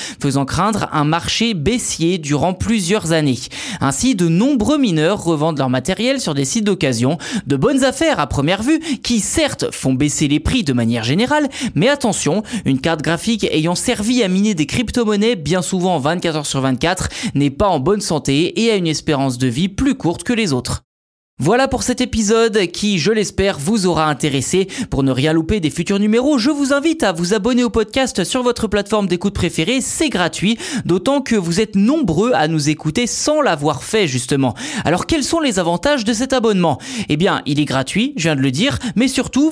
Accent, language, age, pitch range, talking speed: French, French, 20-39, 155-240 Hz, 195 wpm